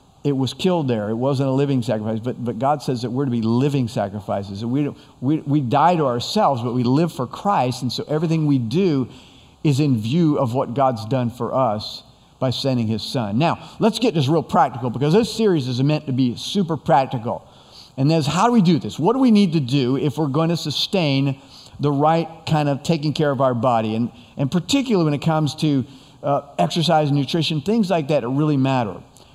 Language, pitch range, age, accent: English, 125-160 Hz, 50-69, American